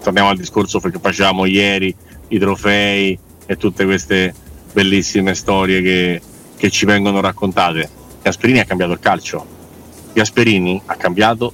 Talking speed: 135 wpm